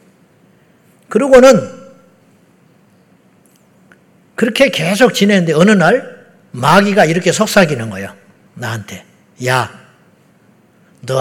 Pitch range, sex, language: 140-200 Hz, male, Korean